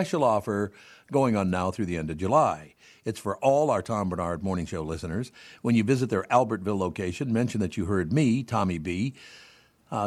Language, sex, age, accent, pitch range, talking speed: English, male, 60-79, American, 95-130 Hz, 195 wpm